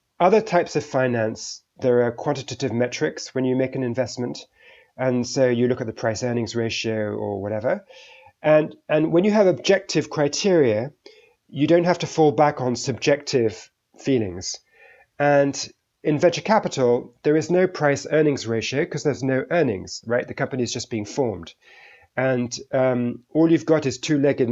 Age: 30-49